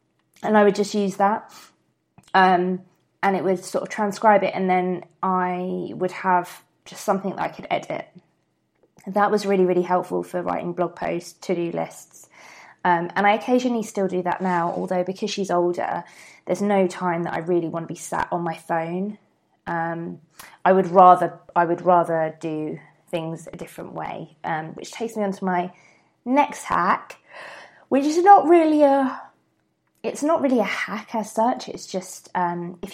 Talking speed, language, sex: 180 wpm, English, female